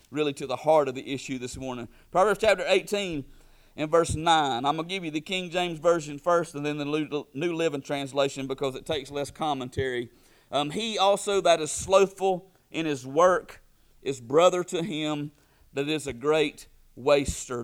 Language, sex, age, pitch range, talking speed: English, male, 40-59, 140-170 Hz, 185 wpm